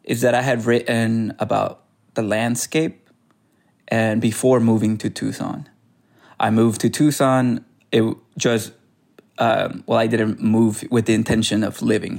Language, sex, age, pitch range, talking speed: English, male, 20-39, 110-120 Hz, 145 wpm